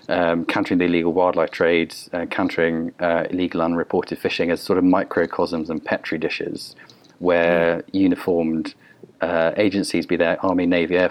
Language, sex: English, male